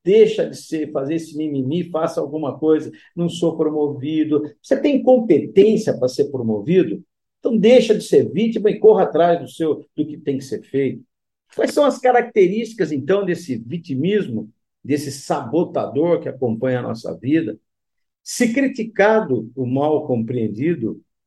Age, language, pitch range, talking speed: 50-69, Portuguese, 135-200 Hz, 150 wpm